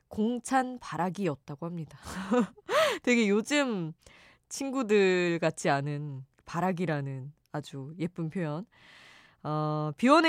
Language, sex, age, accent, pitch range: Korean, female, 20-39, native, 150-220 Hz